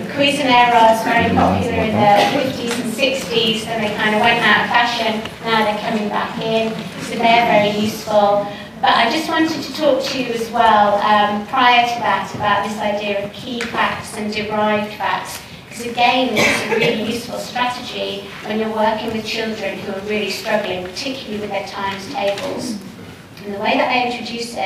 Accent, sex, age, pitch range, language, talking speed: British, female, 30-49, 205-245 Hz, English, 185 wpm